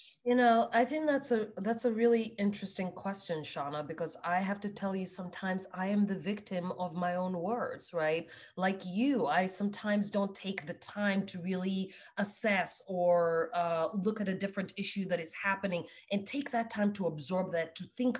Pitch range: 180-230 Hz